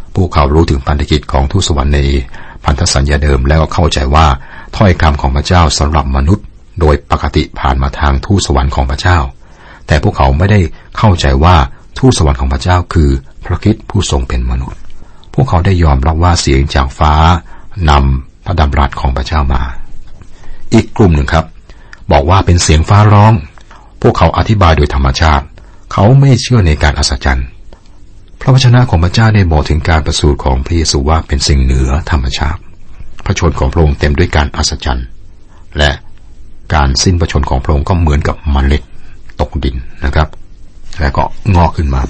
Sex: male